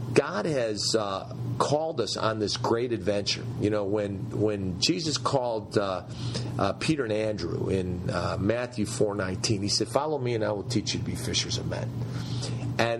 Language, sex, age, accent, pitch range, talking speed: English, male, 40-59, American, 110-130 Hz, 180 wpm